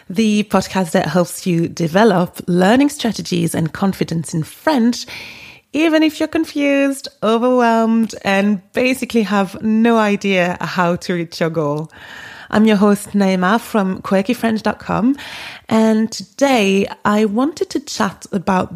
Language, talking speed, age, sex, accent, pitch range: English, 130 wpm, 30-49, female, British, 180-230 Hz